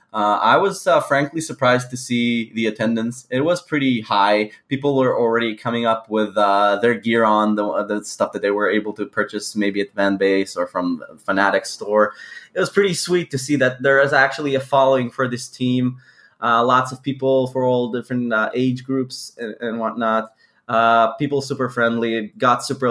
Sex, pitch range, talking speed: male, 105-130 Hz, 200 wpm